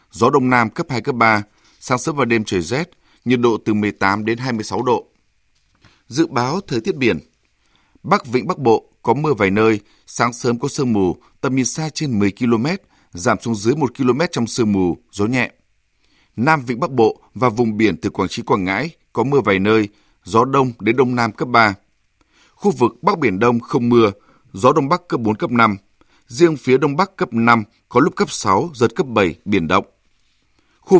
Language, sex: Vietnamese, male